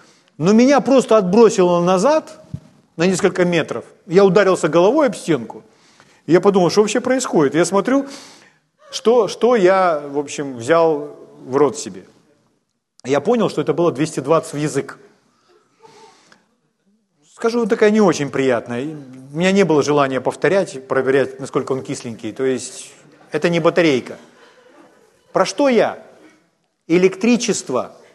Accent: native